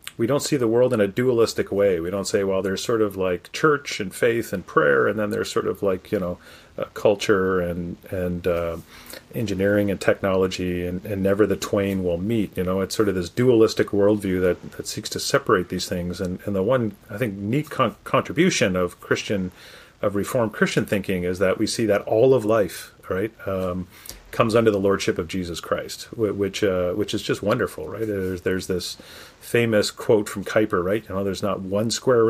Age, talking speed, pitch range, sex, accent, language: 40-59, 210 wpm, 95-115 Hz, male, American, English